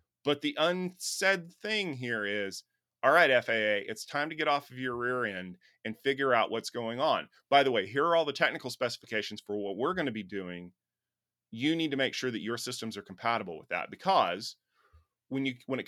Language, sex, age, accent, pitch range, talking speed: English, male, 30-49, American, 110-150 Hz, 215 wpm